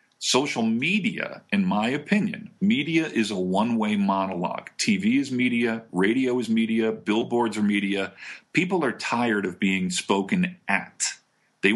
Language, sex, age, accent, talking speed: English, male, 40-59, American, 140 wpm